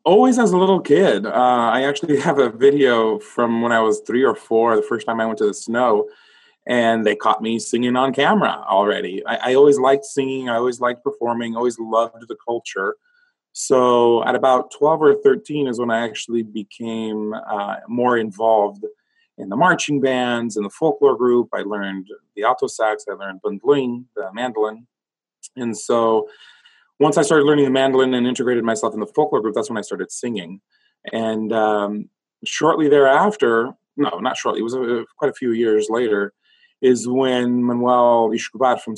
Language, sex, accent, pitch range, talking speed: English, male, American, 110-145 Hz, 185 wpm